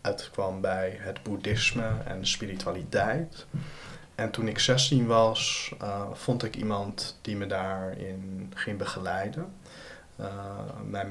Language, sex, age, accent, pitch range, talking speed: Dutch, male, 20-39, Dutch, 100-120 Hz, 120 wpm